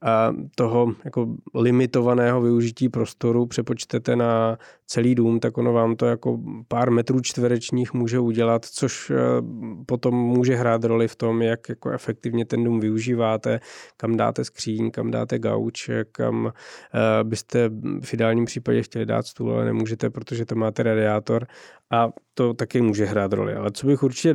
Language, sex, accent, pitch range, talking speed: Czech, male, native, 110-120 Hz, 155 wpm